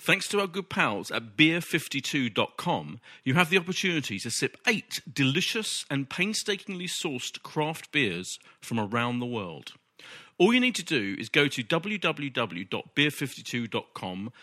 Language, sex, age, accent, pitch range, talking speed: English, male, 40-59, British, 120-165 Hz, 135 wpm